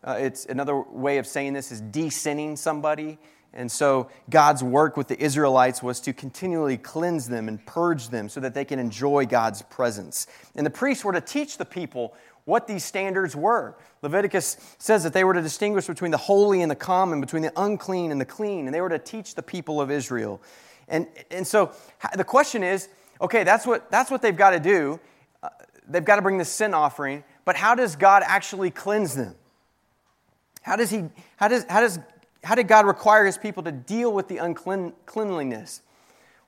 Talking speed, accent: 200 wpm, American